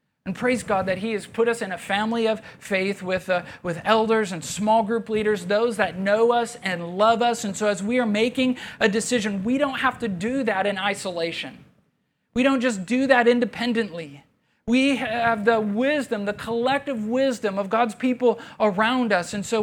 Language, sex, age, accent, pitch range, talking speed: English, male, 40-59, American, 185-225 Hz, 195 wpm